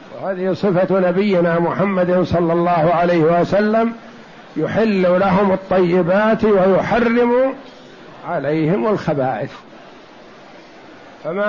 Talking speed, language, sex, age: 80 wpm, Arabic, male, 60-79